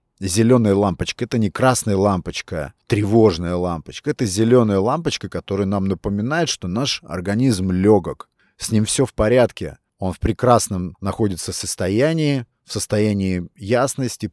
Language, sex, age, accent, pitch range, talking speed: Russian, male, 30-49, native, 95-115 Hz, 130 wpm